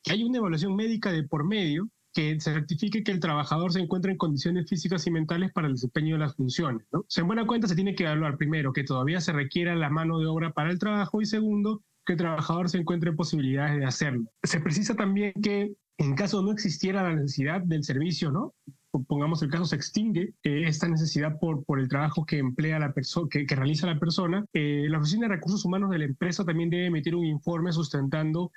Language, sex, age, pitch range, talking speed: Spanish, male, 30-49, 145-175 Hz, 225 wpm